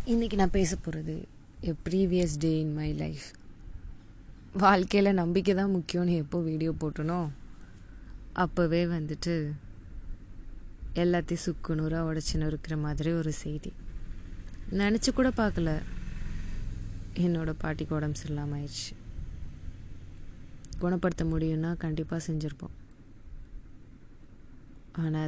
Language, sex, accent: Tamil, female, native